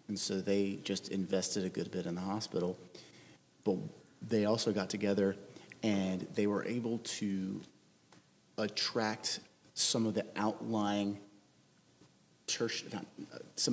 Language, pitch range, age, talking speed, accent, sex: English, 95-110 Hz, 30-49, 120 wpm, American, male